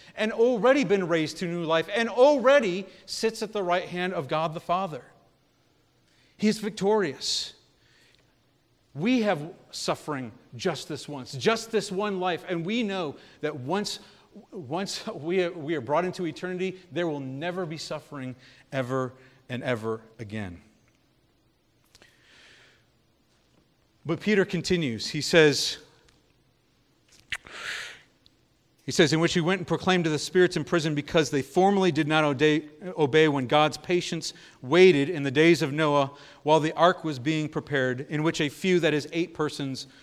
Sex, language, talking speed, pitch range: male, English, 145 wpm, 140-180 Hz